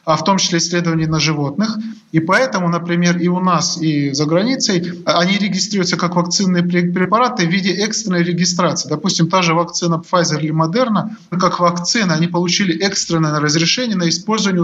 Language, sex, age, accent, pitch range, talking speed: Russian, male, 20-39, native, 165-190 Hz, 165 wpm